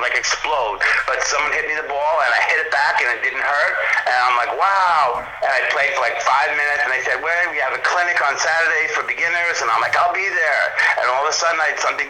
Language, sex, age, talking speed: English, male, 50-69, 270 wpm